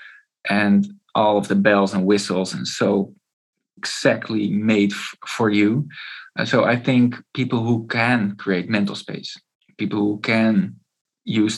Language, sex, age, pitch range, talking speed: English, male, 20-39, 105-125 Hz, 135 wpm